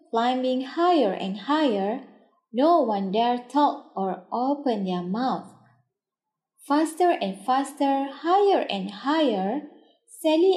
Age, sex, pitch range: 20-39, female, 220-330 Hz